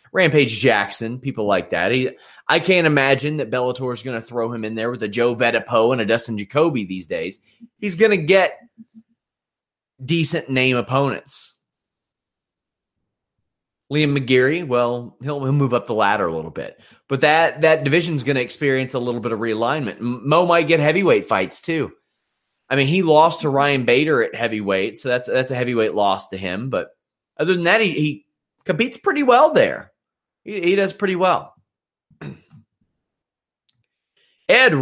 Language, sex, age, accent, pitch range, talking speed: English, male, 30-49, American, 115-155 Hz, 170 wpm